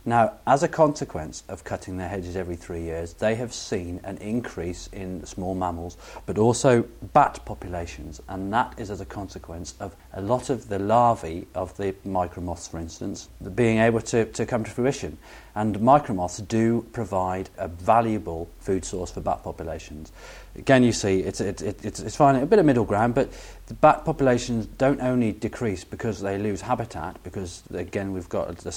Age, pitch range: 40-59, 90-115 Hz